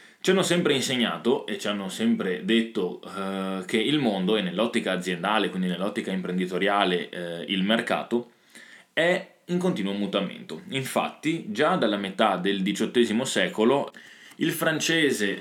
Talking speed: 135 wpm